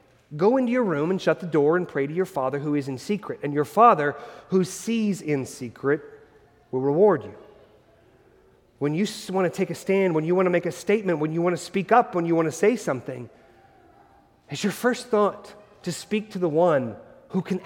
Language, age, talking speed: English, 30-49, 220 wpm